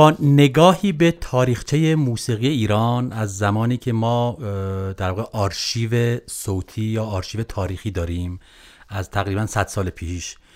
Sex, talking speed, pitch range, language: male, 125 wpm, 100-125 Hz, Persian